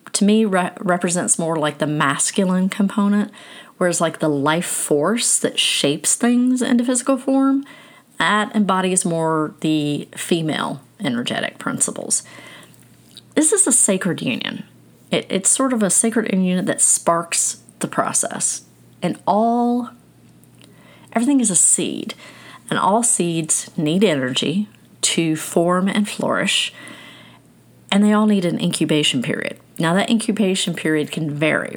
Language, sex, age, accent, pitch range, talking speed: English, female, 40-59, American, 165-225 Hz, 130 wpm